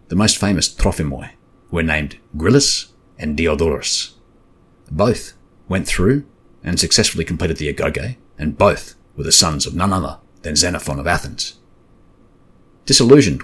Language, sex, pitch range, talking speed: English, male, 75-100 Hz, 135 wpm